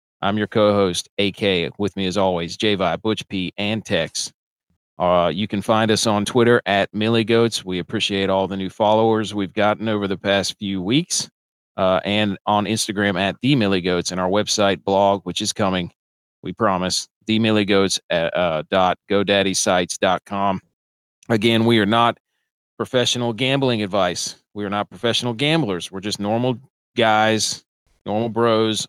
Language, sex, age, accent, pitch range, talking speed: English, male, 40-59, American, 95-110 Hz, 145 wpm